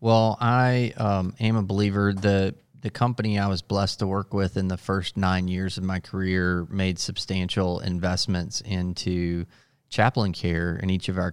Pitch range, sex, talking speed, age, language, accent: 90-110 Hz, male, 175 wpm, 30-49, English, American